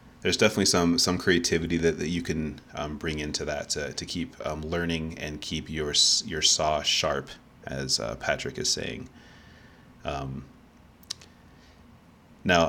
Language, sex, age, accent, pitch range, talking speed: English, male, 30-49, American, 75-85 Hz, 145 wpm